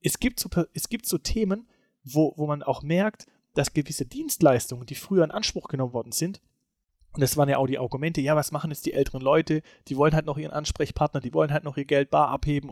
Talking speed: 235 wpm